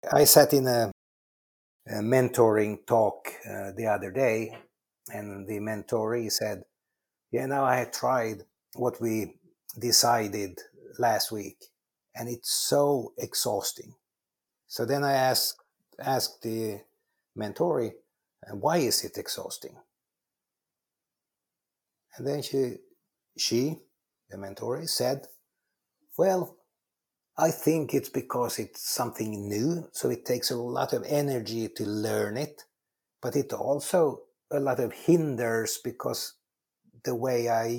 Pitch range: 115-150 Hz